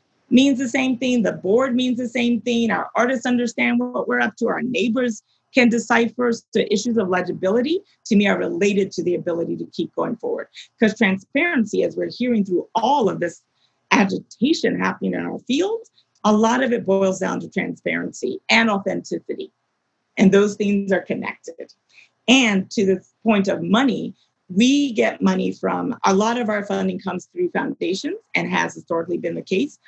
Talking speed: 180 wpm